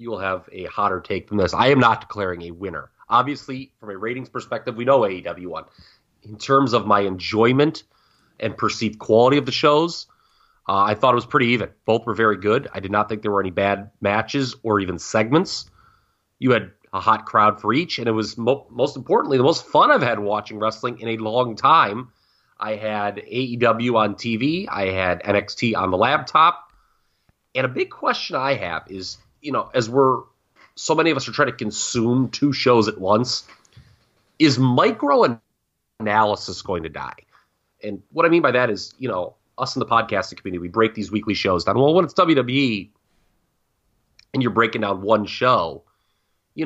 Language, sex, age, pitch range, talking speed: English, male, 30-49, 100-130 Hz, 195 wpm